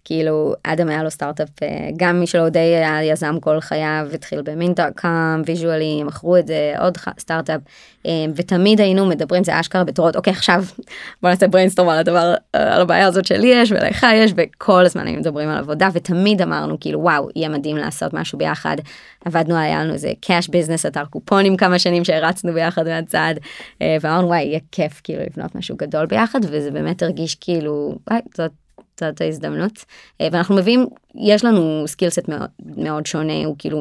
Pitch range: 155-185 Hz